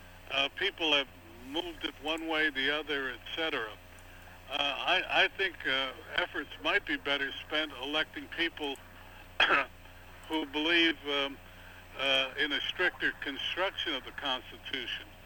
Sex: male